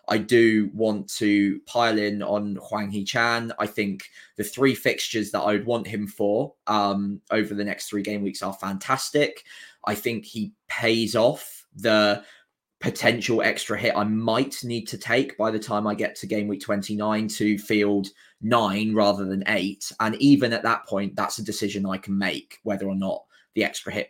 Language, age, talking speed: English, 20-39, 190 wpm